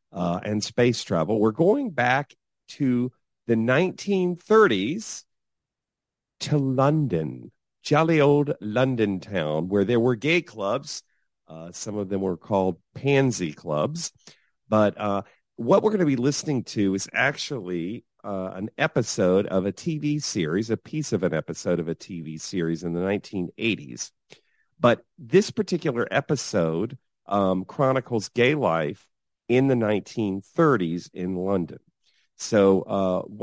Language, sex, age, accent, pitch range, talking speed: English, male, 40-59, American, 95-135 Hz, 135 wpm